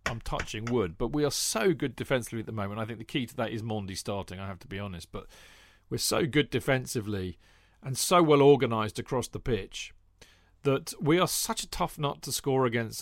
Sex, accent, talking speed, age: male, British, 220 wpm, 40-59